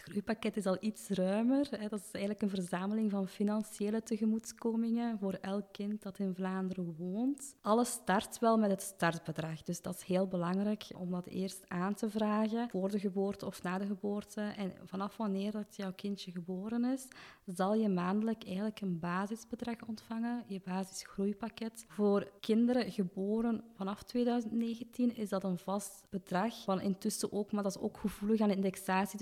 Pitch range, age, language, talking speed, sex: 190-220 Hz, 20-39, Dutch, 170 wpm, female